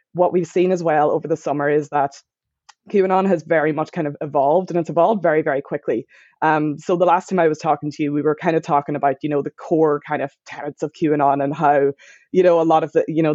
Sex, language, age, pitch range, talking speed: female, English, 20-39, 150-175 Hz, 260 wpm